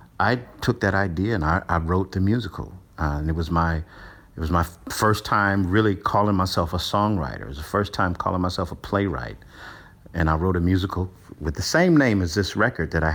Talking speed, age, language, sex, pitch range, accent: 220 wpm, 50-69, English, male, 85-105 Hz, American